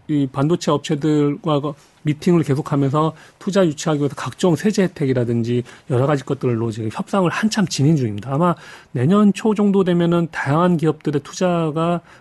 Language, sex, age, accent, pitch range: Korean, male, 40-59, native, 130-180 Hz